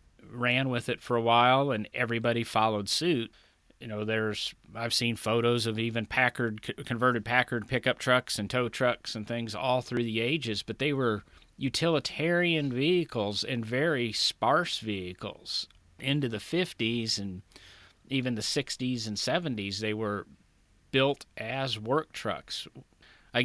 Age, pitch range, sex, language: 40-59, 105-130 Hz, male, English